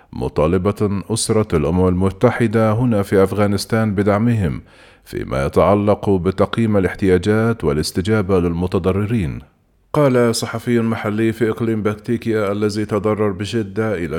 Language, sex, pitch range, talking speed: Arabic, male, 100-115 Hz, 100 wpm